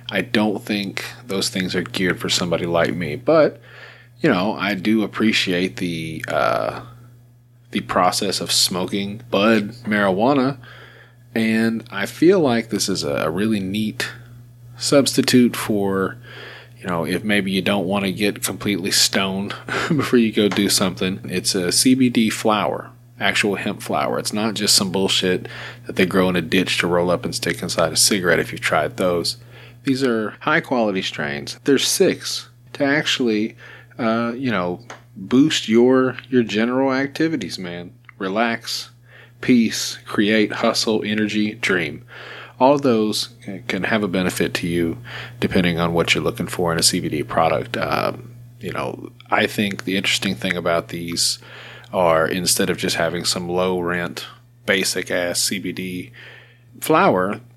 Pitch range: 95-120 Hz